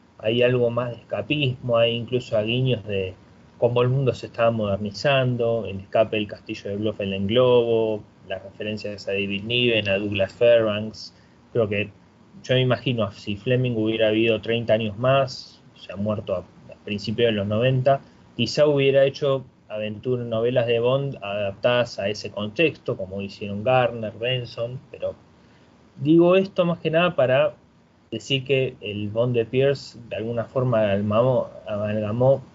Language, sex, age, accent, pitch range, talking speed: Spanish, male, 20-39, Argentinian, 110-135 Hz, 155 wpm